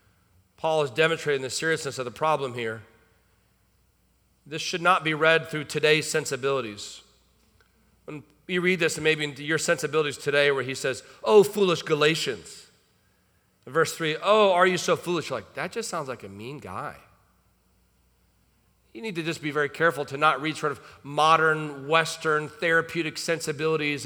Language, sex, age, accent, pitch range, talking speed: English, male, 40-59, American, 145-190 Hz, 160 wpm